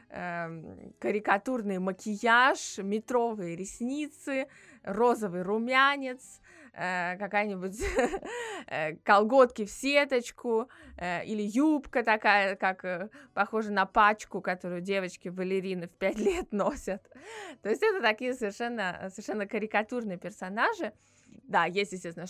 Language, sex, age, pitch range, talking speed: Russian, female, 20-39, 185-250 Hz, 95 wpm